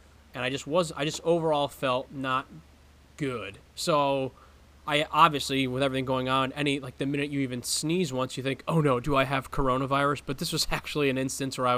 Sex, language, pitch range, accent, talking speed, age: male, English, 130-150 Hz, American, 210 wpm, 20-39